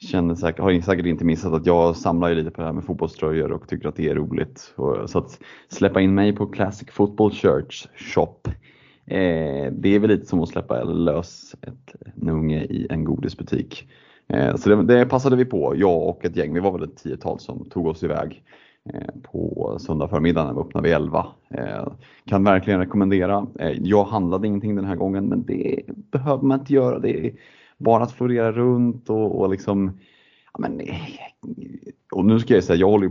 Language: Swedish